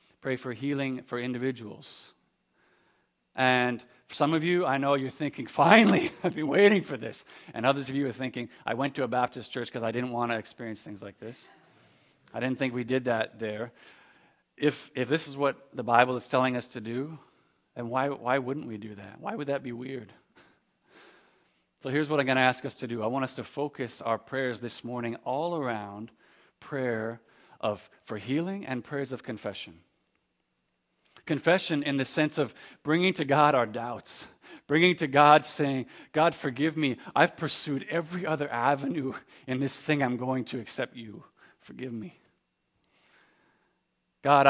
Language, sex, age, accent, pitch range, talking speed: English, male, 40-59, American, 115-140 Hz, 180 wpm